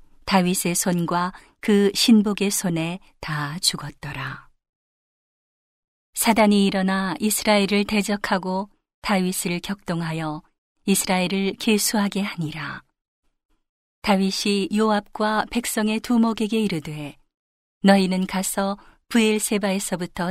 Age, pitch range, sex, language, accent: 40-59, 180-205 Hz, female, Korean, native